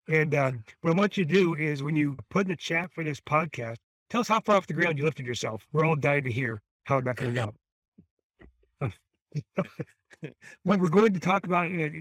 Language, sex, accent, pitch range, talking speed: English, male, American, 125-165 Hz, 225 wpm